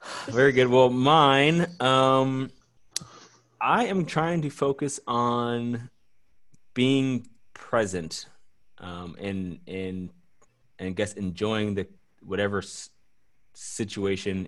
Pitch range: 95-115 Hz